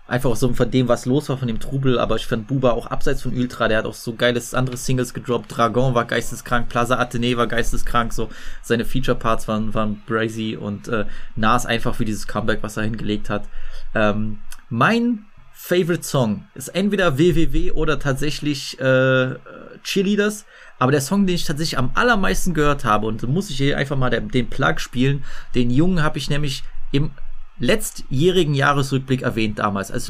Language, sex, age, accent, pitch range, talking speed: German, male, 20-39, German, 120-145 Hz, 185 wpm